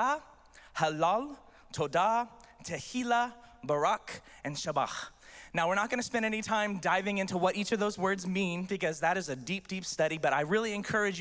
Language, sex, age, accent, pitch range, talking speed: English, male, 20-39, American, 155-225 Hz, 170 wpm